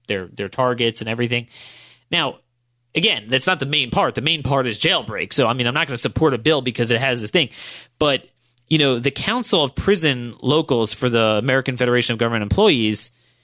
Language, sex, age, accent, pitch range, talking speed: English, male, 30-49, American, 120-155 Hz, 210 wpm